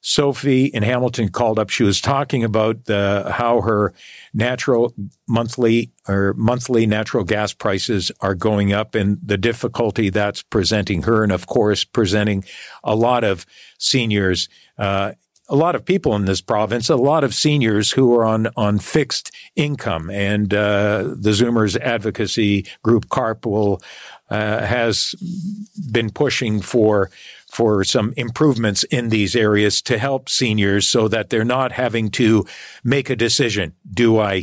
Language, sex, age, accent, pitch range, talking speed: English, male, 50-69, American, 105-125 Hz, 150 wpm